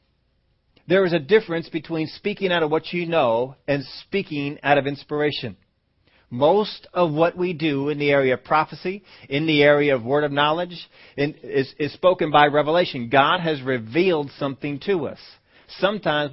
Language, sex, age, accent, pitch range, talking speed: English, male, 40-59, American, 125-155 Hz, 170 wpm